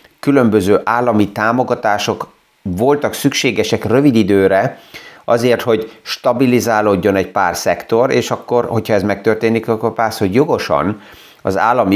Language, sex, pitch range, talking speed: Hungarian, male, 105-125 Hz, 120 wpm